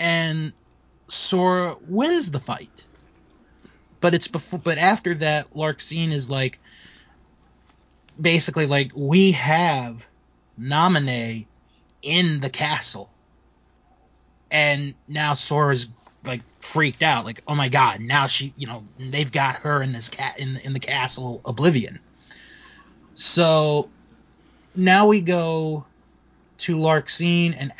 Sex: male